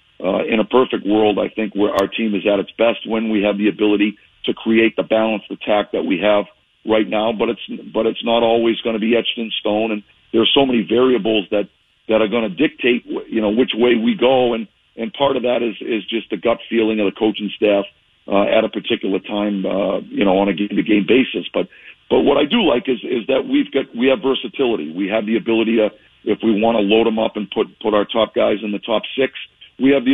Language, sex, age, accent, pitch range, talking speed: English, male, 50-69, American, 105-120 Hz, 255 wpm